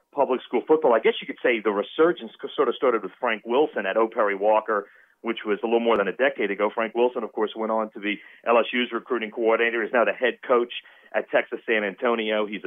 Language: English